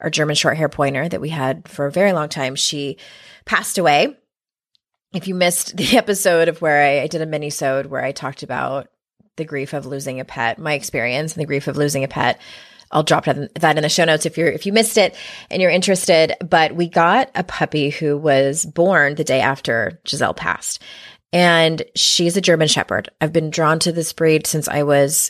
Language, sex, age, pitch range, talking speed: English, female, 20-39, 150-190 Hz, 210 wpm